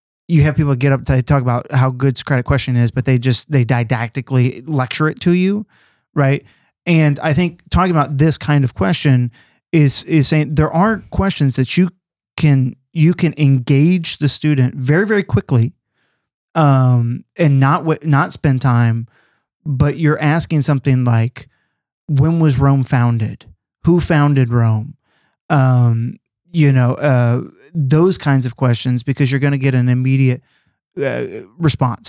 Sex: male